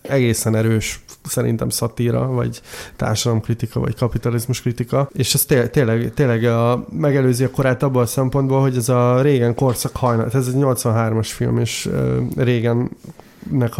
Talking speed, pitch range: 145 wpm, 115-125 Hz